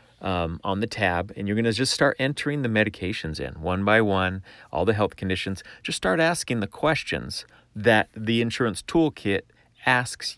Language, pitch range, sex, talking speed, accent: English, 95-115 Hz, male, 180 wpm, American